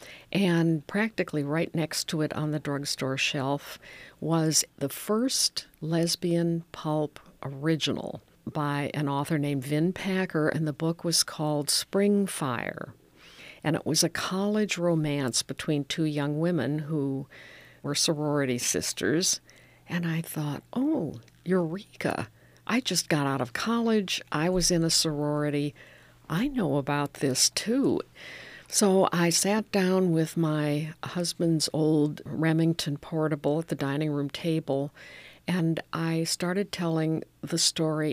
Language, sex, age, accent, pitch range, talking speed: English, female, 60-79, American, 145-175 Hz, 135 wpm